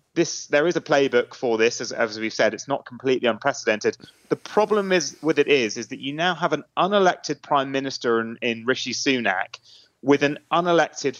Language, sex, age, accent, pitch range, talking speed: English, male, 30-49, British, 125-155 Hz, 200 wpm